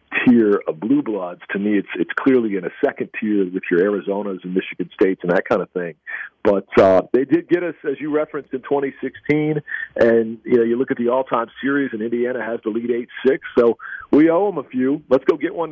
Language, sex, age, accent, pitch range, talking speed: English, male, 50-69, American, 105-145 Hz, 235 wpm